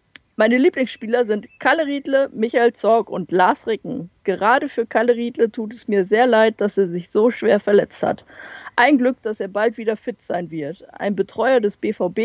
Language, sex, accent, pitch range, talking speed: German, female, German, 205-250 Hz, 190 wpm